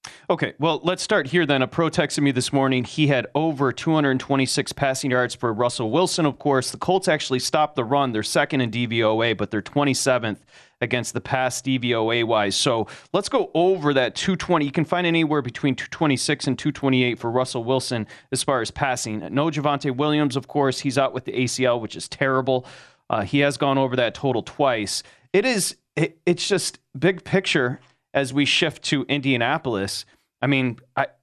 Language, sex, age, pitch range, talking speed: English, male, 30-49, 125-150 Hz, 185 wpm